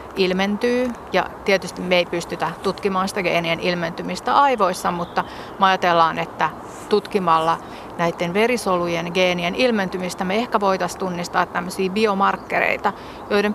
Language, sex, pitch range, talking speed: Finnish, female, 180-210 Hz, 115 wpm